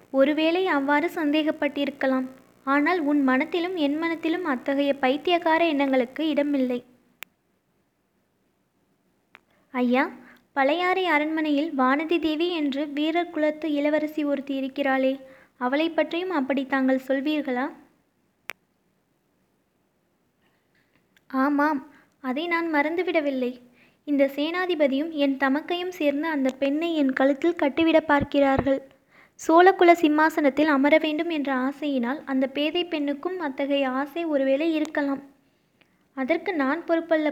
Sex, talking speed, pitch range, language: female, 90 wpm, 275-320 Hz, Tamil